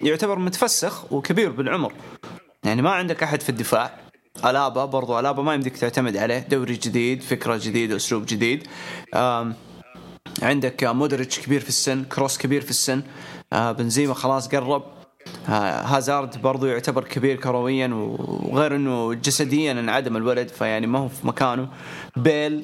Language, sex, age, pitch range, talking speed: English, male, 20-39, 125-150 Hz, 140 wpm